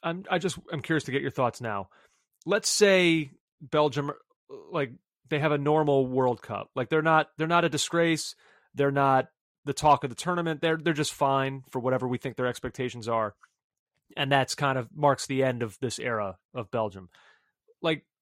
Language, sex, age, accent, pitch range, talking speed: English, male, 30-49, American, 130-160 Hz, 190 wpm